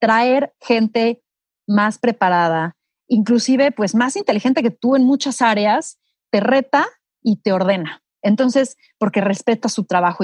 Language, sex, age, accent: Spanish, female, 30-49, Mexican